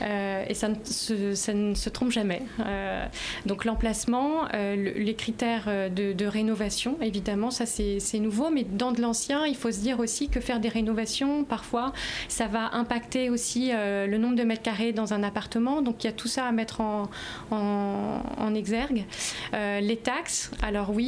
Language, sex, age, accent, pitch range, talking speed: French, female, 20-39, French, 205-235 Hz, 195 wpm